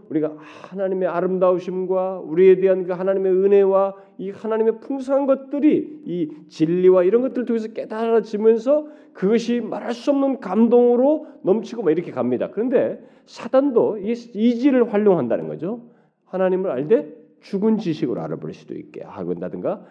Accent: native